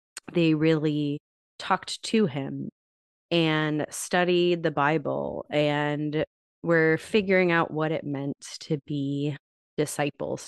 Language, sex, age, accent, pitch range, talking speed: English, female, 20-39, American, 145-170 Hz, 110 wpm